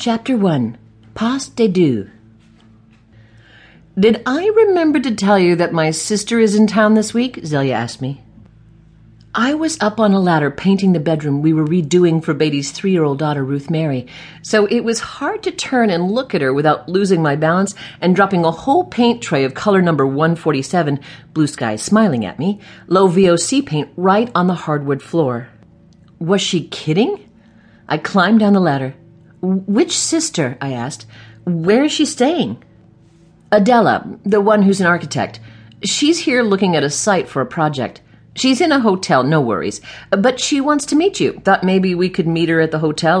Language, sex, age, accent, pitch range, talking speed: English, female, 50-69, American, 140-215 Hz, 180 wpm